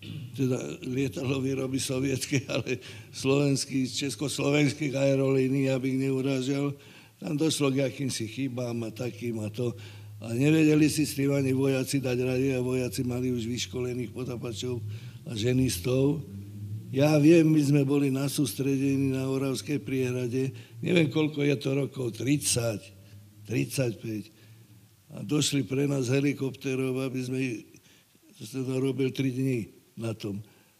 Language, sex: Slovak, male